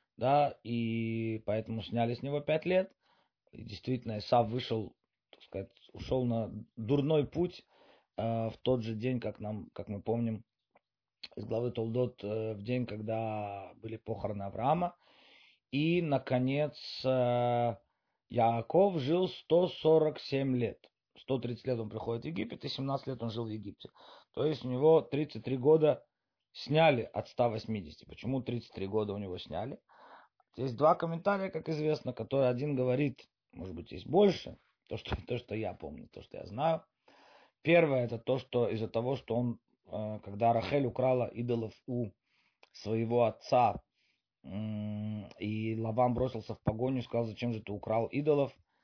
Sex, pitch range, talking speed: male, 110-140 Hz, 145 wpm